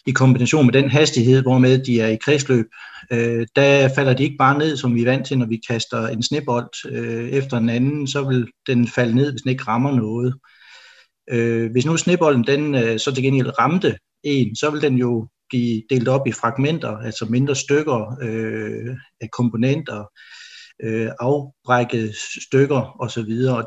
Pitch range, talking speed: 115-135 Hz, 175 wpm